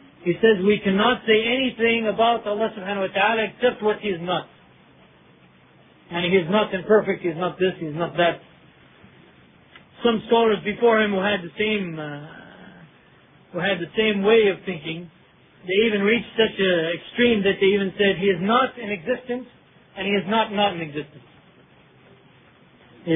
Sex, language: male, English